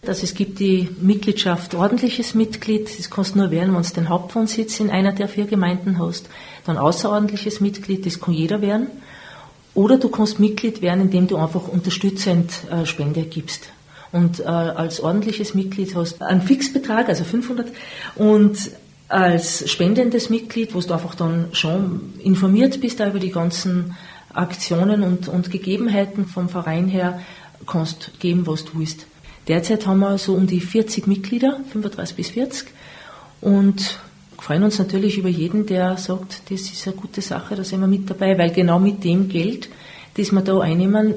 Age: 40-59